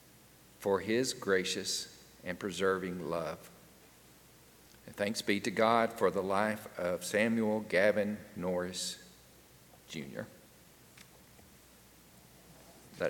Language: English